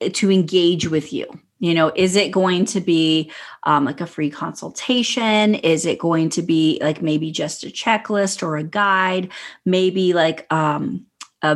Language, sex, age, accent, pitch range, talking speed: English, female, 30-49, American, 165-205 Hz, 170 wpm